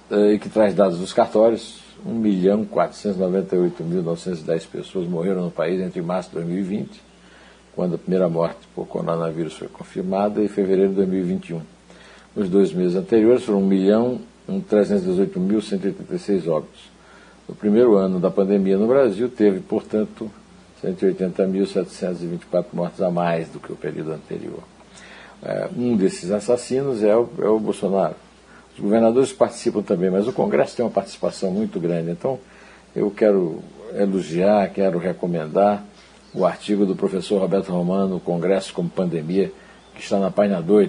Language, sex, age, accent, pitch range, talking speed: Portuguese, male, 60-79, Brazilian, 95-110 Hz, 135 wpm